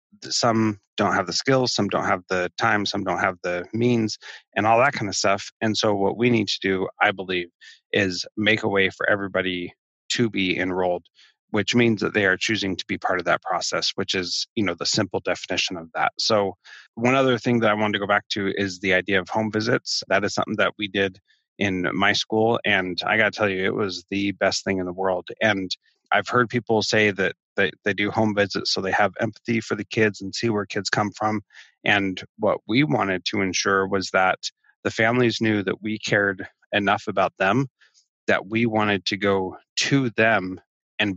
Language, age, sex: English, 30-49, male